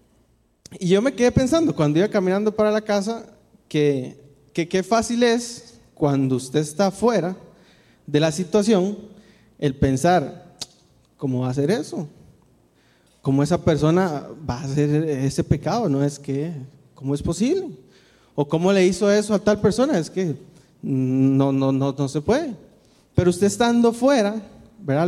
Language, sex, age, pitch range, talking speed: Spanish, male, 30-49, 140-210 Hz, 155 wpm